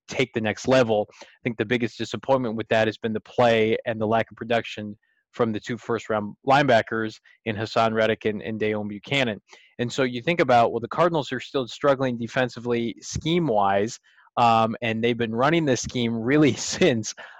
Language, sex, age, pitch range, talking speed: English, male, 20-39, 115-130 Hz, 195 wpm